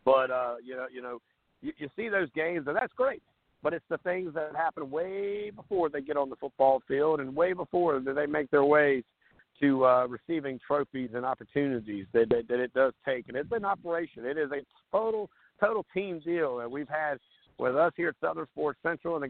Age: 50-69